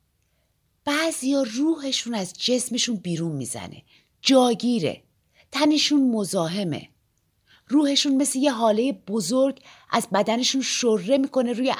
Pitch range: 195-265 Hz